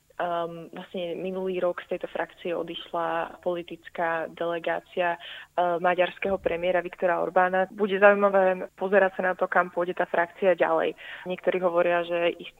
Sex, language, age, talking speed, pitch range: female, Slovak, 20-39, 145 wpm, 170-185 Hz